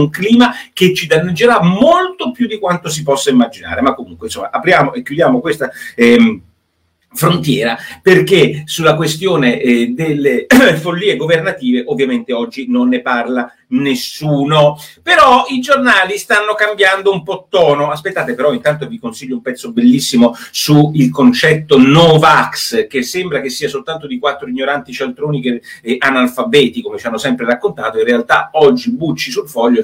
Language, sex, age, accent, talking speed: Italian, male, 40-59, native, 150 wpm